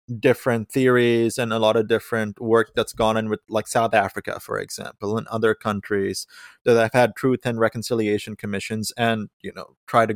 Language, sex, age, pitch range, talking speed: English, male, 20-39, 105-130 Hz, 190 wpm